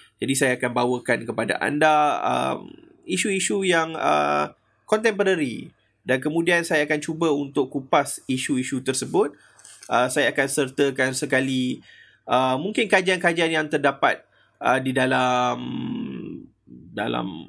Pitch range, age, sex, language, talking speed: 125-165 Hz, 20-39, male, Malay, 115 wpm